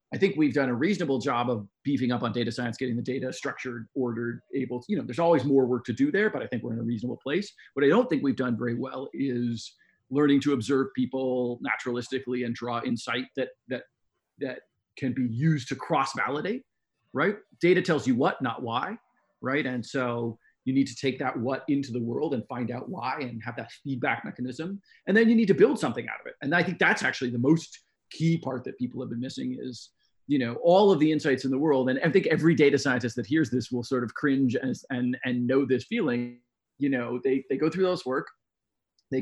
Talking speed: 235 wpm